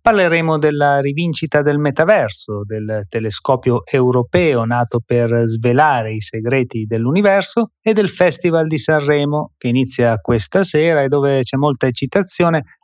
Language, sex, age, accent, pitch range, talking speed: Italian, male, 30-49, native, 120-160 Hz, 130 wpm